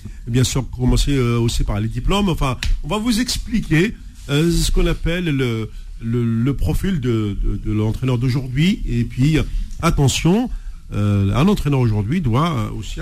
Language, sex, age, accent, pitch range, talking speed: French, male, 50-69, French, 115-160 Hz, 150 wpm